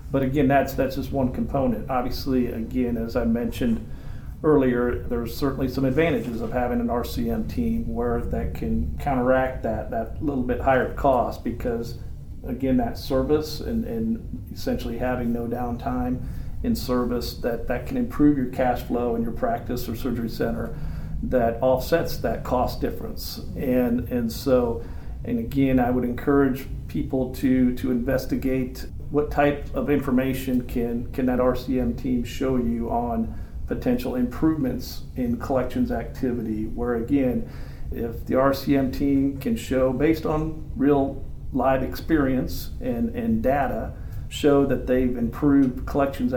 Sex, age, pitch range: male, 50-69, 115-135 Hz